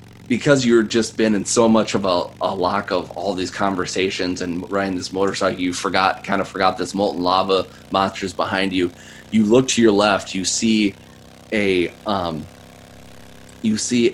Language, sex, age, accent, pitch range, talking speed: English, male, 20-39, American, 90-110 Hz, 175 wpm